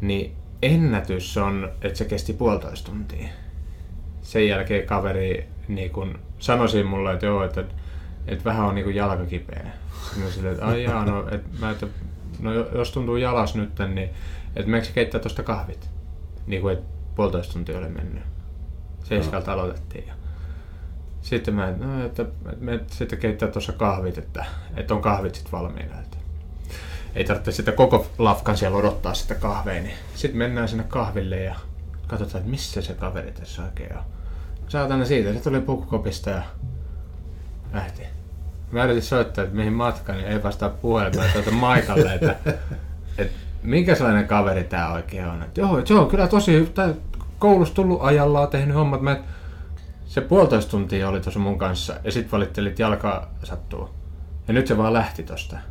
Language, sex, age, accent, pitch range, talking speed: Finnish, male, 30-49, native, 80-110 Hz, 155 wpm